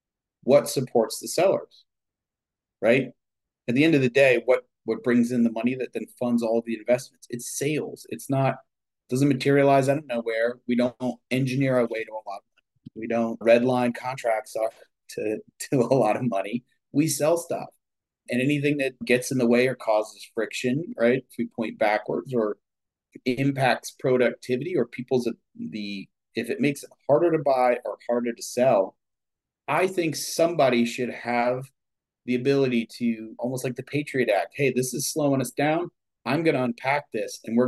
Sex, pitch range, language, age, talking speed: male, 115-135 Hz, English, 30-49, 180 wpm